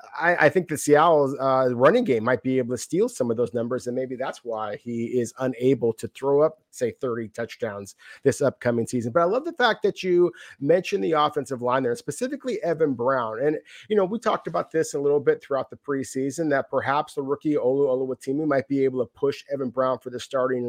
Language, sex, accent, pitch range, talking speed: English, male, American, 125-160 Hz, 225 wpm